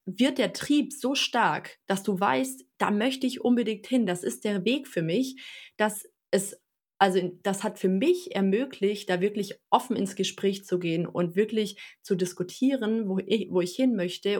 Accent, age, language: German, 20-39, German